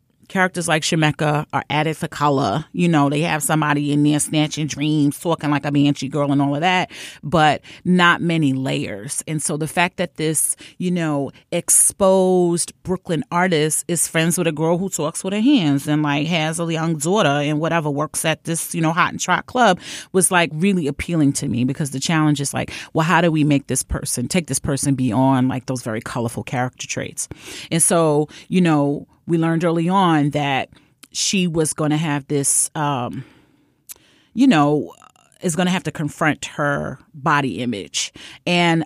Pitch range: 145-175 Hz